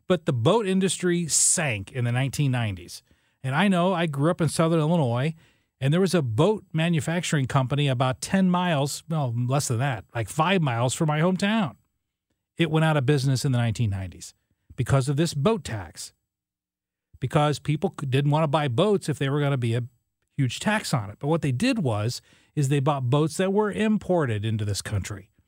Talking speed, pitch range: 195 wpm, 125-180 Hz